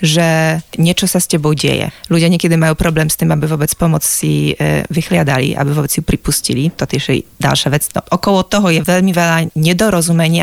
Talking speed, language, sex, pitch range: 185 wpm, Slovak, female, 155-180 Hz